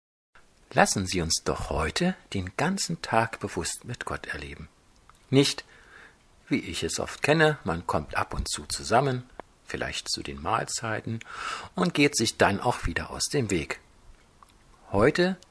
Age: 50-69